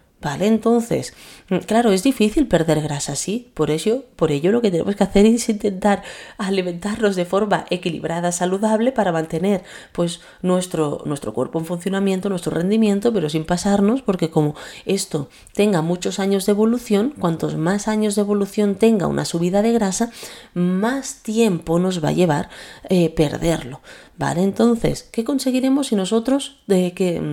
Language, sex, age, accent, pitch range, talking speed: Spanish, female, 30-49, Spanish, 165-215 Hz, 155 wpm